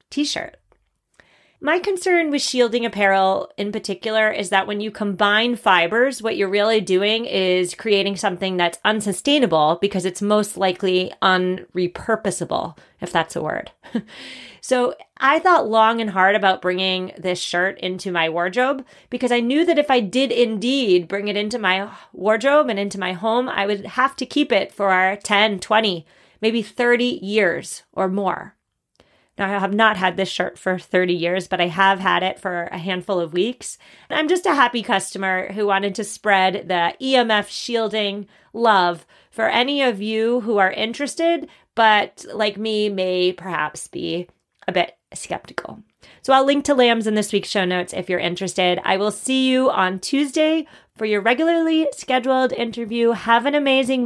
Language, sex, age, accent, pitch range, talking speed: English, female, 30-49, American, 185-245 Hz, 170 wpm